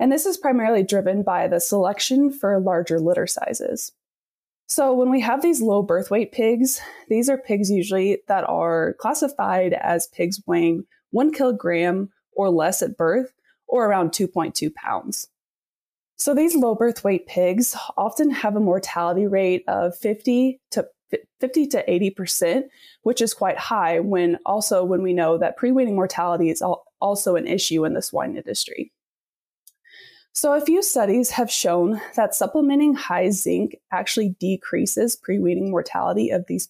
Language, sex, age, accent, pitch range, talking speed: English, female, 20-39, American, 180-260 Hz, 150 wpm